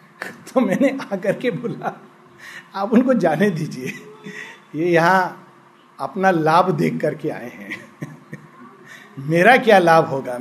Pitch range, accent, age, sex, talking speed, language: 170-235 Hz, native, 50-69, male, 125 wpm, Hindi